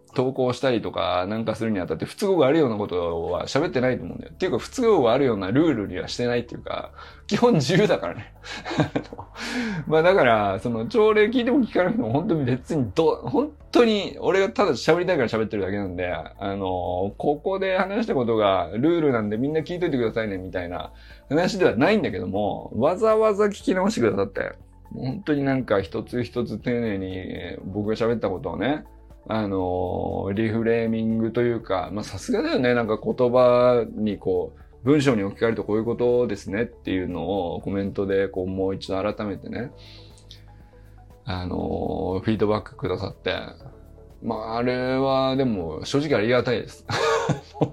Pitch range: 100-140 Hz